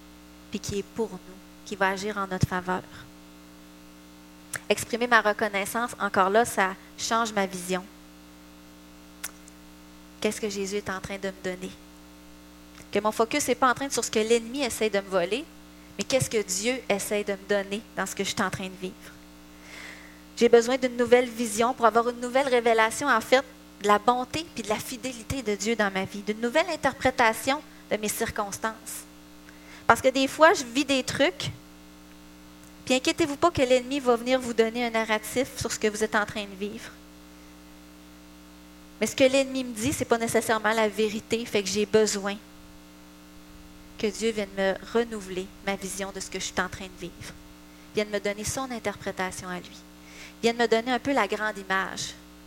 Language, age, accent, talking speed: French, 30-49, Canadian, 190 wpm